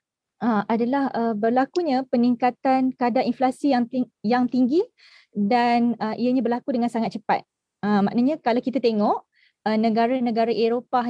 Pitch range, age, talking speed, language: 225-255 Hz, 20-39, 135 wpm, Malay